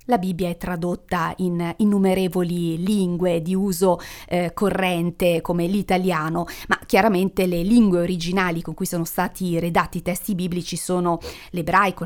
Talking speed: 140 wpm